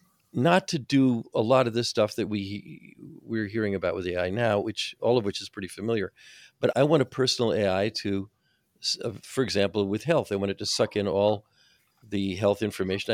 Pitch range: 100-120 Hz